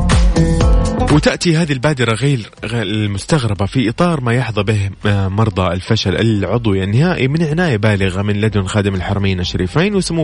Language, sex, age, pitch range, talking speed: Arabic, male, 30-49, 100-135 Hz, 140 wpm